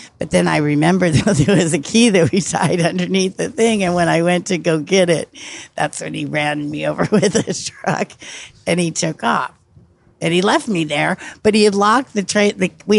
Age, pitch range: 50-69, 150-185 Hz